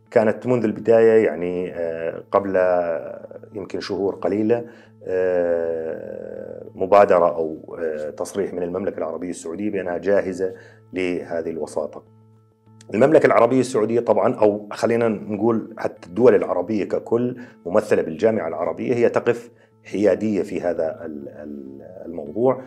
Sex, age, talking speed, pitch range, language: male, 40-59, 105 wpm, 90-115 Hz, Arabic